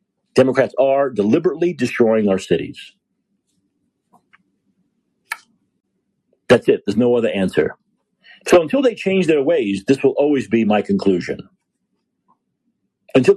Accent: American